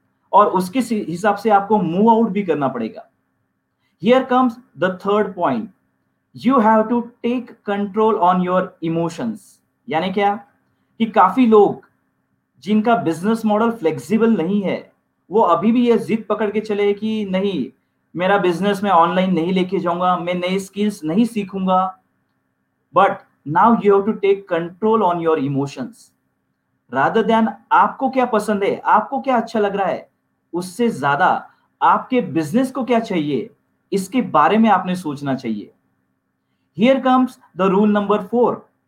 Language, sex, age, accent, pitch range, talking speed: Hindi, male, 40-59, native, 165-225 Hz, 135 wpm